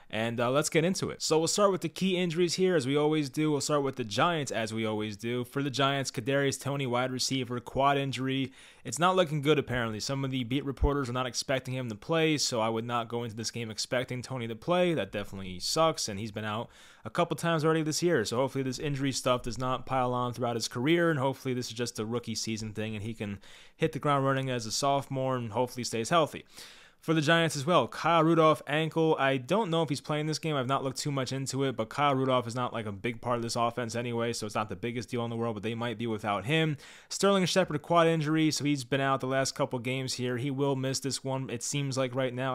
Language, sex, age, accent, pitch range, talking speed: English, male, 20-39, American, 120-150 Hz, 260 wpm